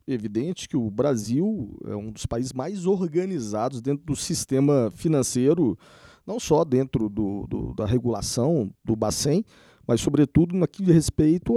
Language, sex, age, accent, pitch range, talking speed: Portuguese, male, 40-59, Brazilian, 110-150 Hz, 145 wpm